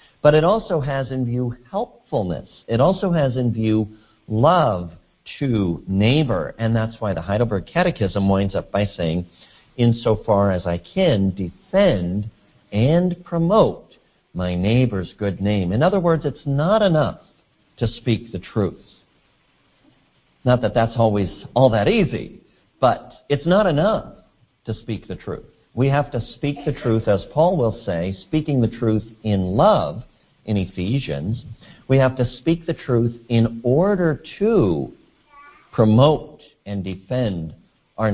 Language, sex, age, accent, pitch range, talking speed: English, male, 50-69, American, 100-140 Hz, 145 wpm